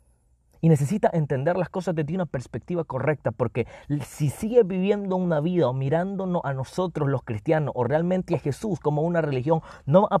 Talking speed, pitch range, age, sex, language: 180 wpm, 135-180 Hz, 30-49, male, Spanish